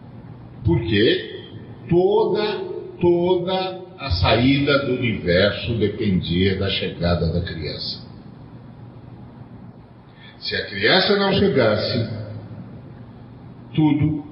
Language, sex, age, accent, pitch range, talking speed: Portuguese, male, 50-69, Brazilian, 105-135 Hz, 75 wpm